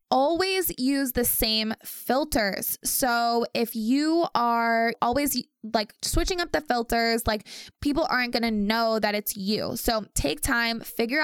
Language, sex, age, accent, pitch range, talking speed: English, female, 20-39, American, 210-245 Hz, 150 wpm